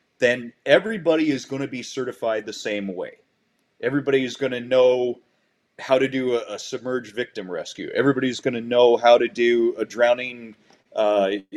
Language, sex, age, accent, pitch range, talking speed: English, male, 30-49, American, 110-130 Hz, 170 wpm